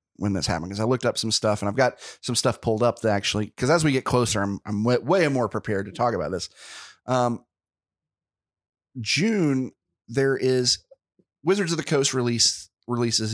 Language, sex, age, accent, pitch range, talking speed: English, male, 30-49, American, 105-135 Hz, 190 wpm